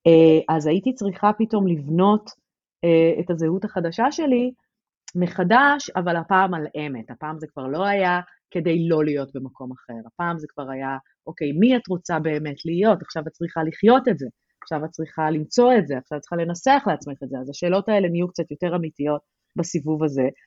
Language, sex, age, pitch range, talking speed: Hebrew, female, 30-49, 145-185 Hz, 180 wpm